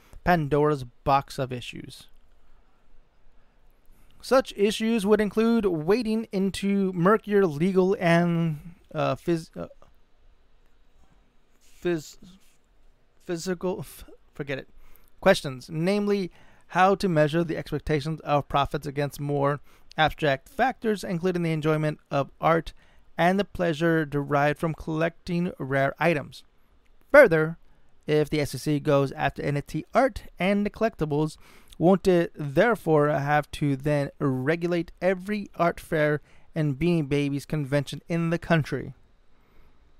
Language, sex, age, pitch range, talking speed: English, male, 30-49, 145-180 Hz, 110 wpm